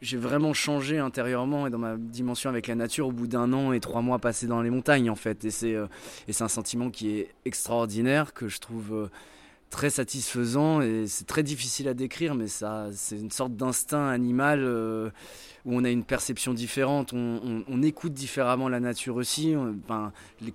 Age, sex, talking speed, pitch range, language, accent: 20-39, male, 200 wpm, 105-130 Hz, French, French